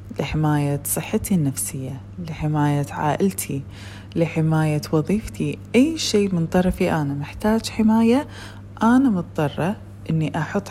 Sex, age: female, 20-39